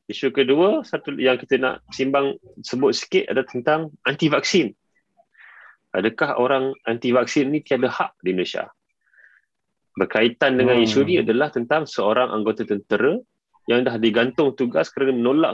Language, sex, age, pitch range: Malay, male, 30-49, 100-130 Hz